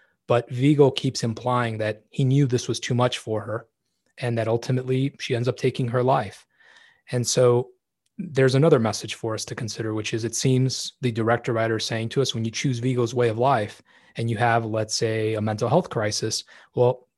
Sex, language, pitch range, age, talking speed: male, English, 115-130 Hz, 20-39, 205 wpm